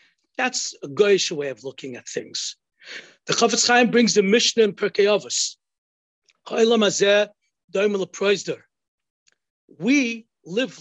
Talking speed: 100 wpm